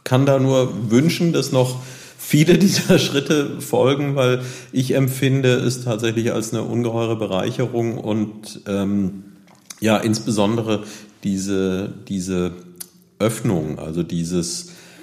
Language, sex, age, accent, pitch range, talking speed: German, male, 50-69, German, 100-115 Hz, 120 wpm